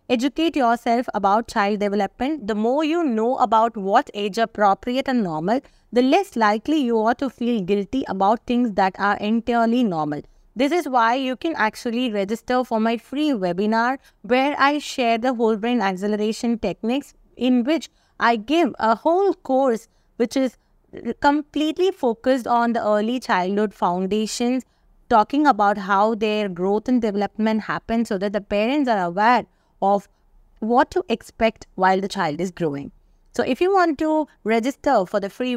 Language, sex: English, female